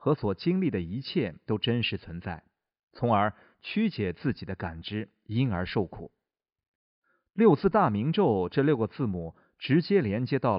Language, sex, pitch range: Chinese, male, 95-150 Hz